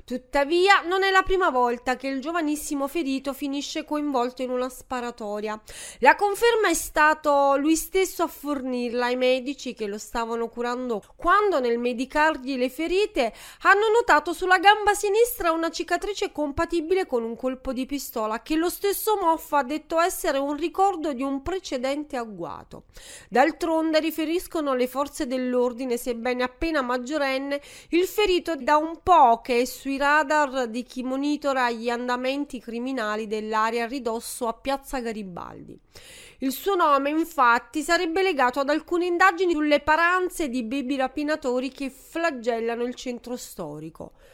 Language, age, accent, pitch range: Italian, 30-49, native, 250-340 Hz